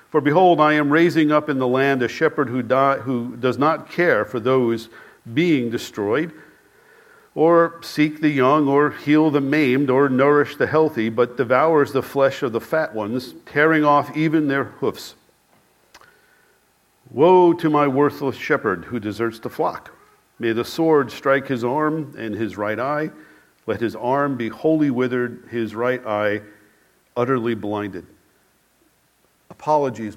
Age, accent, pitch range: 50-69, American, 125-160 Hz